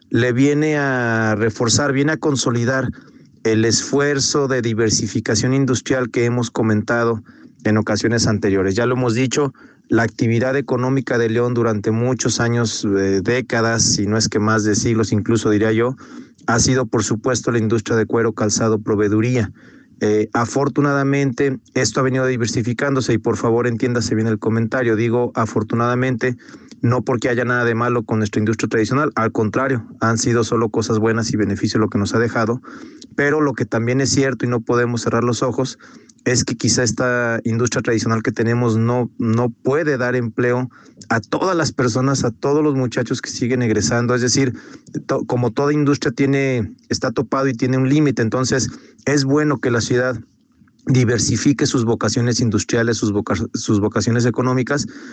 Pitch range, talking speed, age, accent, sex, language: 115-130 Hz, 165 wpm, 40-59, Mexican, male, Spanish